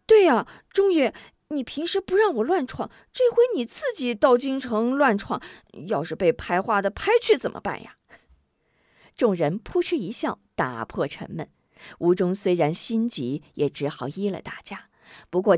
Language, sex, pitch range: Chinese, female, 170-270 Hz